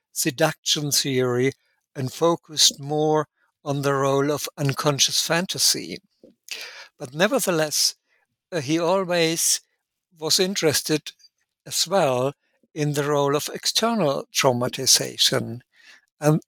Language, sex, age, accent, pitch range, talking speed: English, male, 60-79, German, 140-170 Hz, 100 wpm